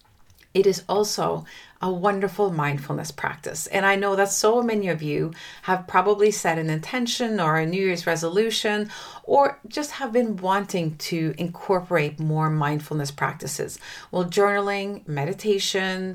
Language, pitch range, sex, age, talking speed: English, 160-205 Hz, female, 40-59, 140 wpm